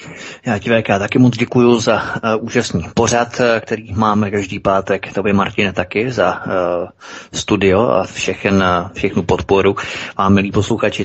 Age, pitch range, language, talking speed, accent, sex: 30-49, 95-115 Hz, Czech, 165 wpm, native, male